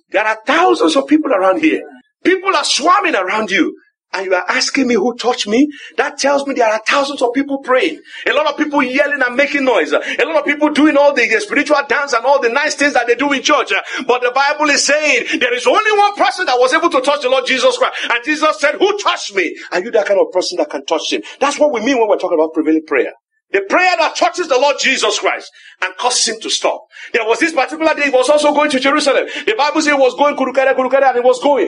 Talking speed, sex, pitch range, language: 260 wpm, male, 255-330 Hz, English